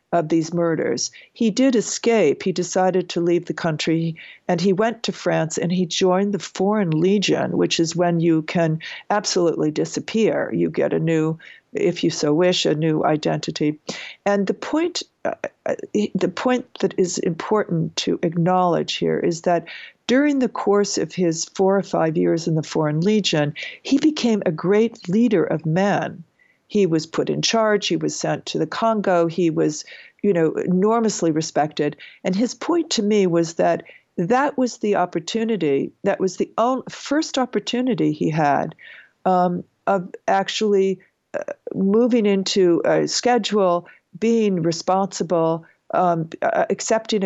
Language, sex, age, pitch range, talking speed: English, female, 60-79, 165-215 Hz, 150 wpm